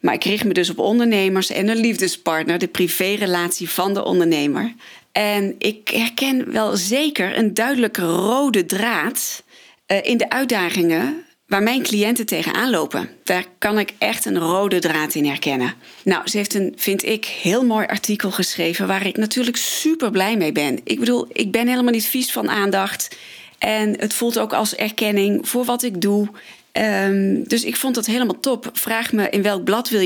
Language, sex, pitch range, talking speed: Dutch, female, 175-225 Hz, 180 wpm